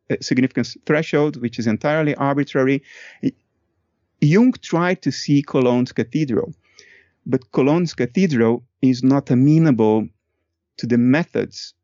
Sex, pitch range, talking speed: male, 115-150 Hz, 105 wpm